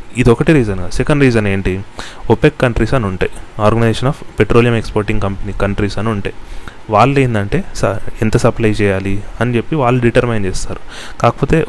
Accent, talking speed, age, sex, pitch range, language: native, 145 wpm, 30-49, male, 105-130 Hz, Telugu